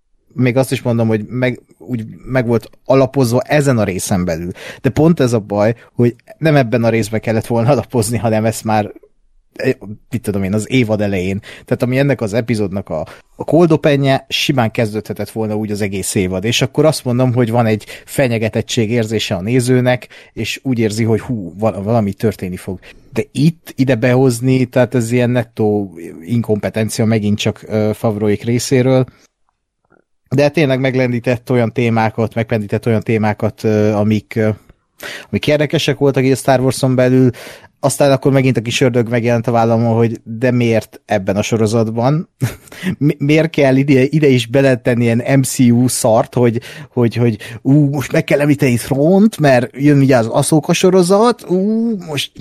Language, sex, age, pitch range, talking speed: Hungarian, male, 30-49, 110-140 Hz, 160 wpm